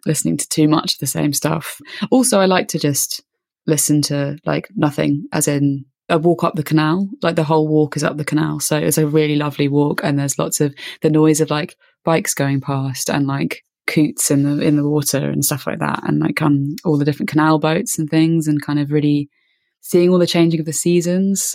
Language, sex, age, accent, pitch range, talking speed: English, female, 20-39, British, 145-160 Hz, 230 wpm